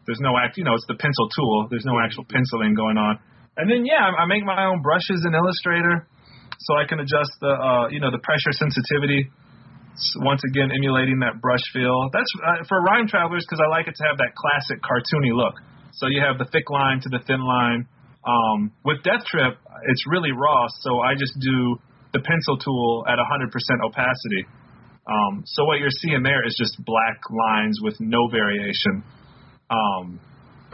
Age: 30-49